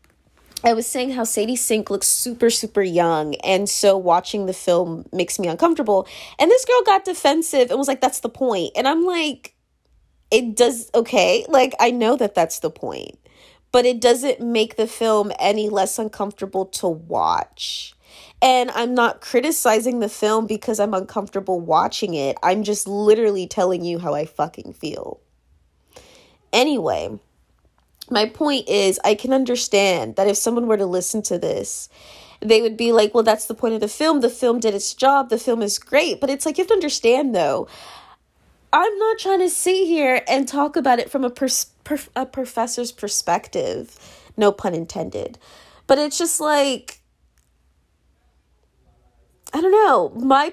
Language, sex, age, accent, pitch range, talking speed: English, female, 20-39, American, 190-265 Hz, 170 wpm